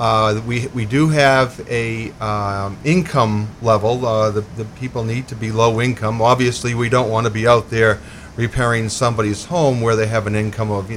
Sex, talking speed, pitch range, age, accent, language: male, 195 wpm, 105-130 Hz, 40-59, American, English